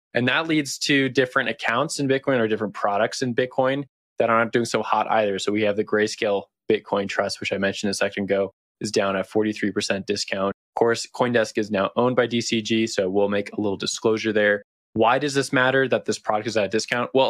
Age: 20-39